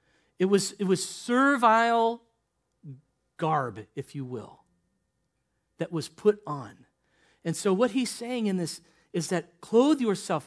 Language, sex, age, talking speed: English, male, 40-59, 140 wpm